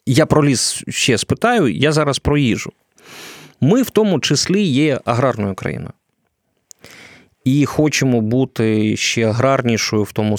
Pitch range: 105-135 Hz